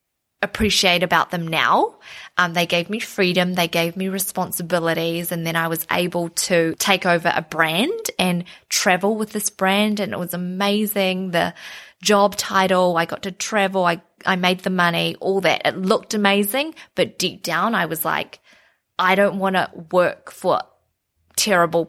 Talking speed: 170 wpm